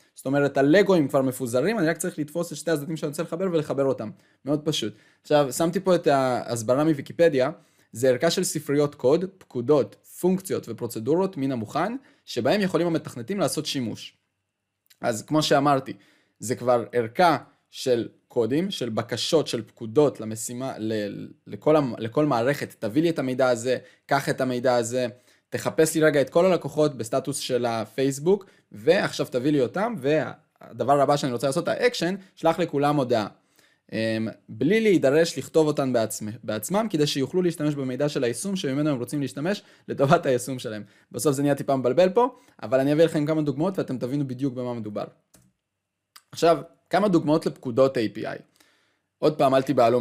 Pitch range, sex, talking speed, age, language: 120-160 Hz, male, 160 wpm, 20-39, Hebrew